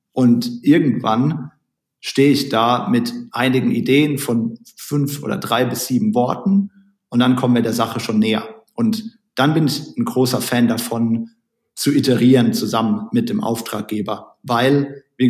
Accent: German